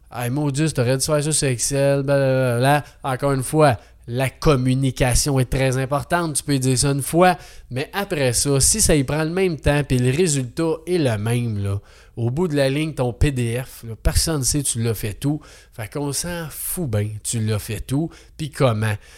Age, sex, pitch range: 20-39, male, 120-160 Hz